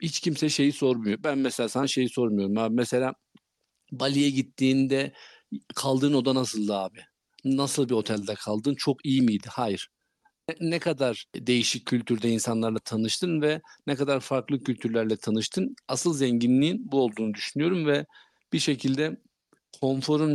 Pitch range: 120-155 Hz